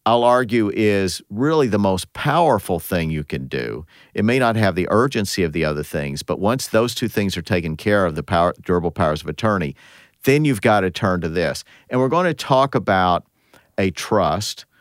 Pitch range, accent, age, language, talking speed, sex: 95-120 Hz, American, 50-69, English, 205 wpm, male